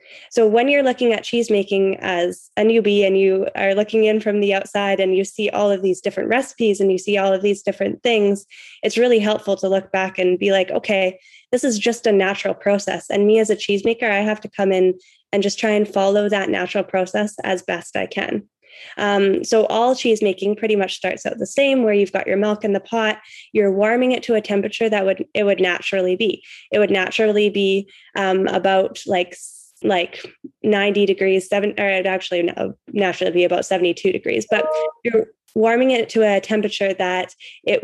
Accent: American